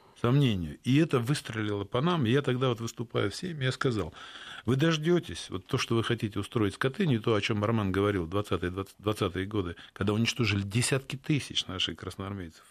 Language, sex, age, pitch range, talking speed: Russian, male, 50-69, 100-145 Hz, 185 wpm